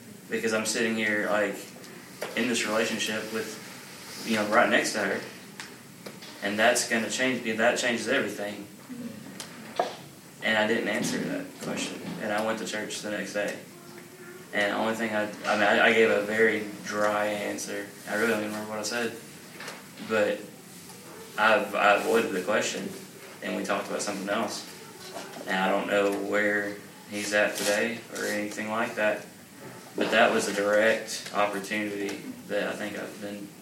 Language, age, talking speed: English, 20-39, 165 wpm